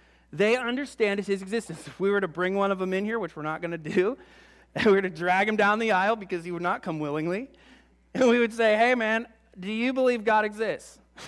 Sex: male